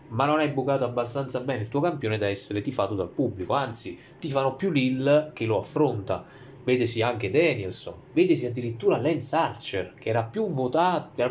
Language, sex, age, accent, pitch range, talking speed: Italian, male, 20-39, native, 110-135 Hz, 175 wpm